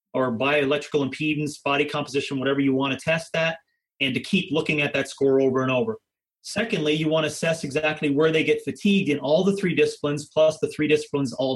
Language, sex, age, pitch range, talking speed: English, male, 30-49, 140-160 Hz, 215 wpm